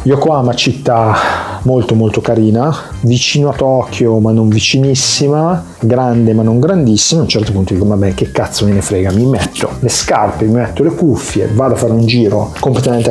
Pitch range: 105-125 Hz